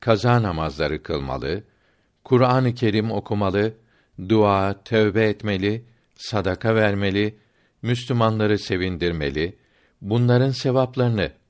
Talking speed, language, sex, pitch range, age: 80 wpm, Turkish, male, 95-120 Hz, 50-69